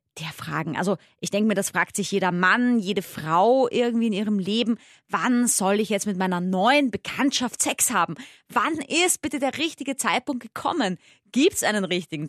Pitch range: 200-265 Hz